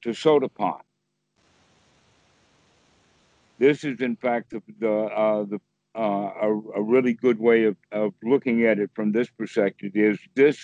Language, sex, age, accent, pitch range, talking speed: English, male, 60-79, American, 100-130 Hz, 150 wpm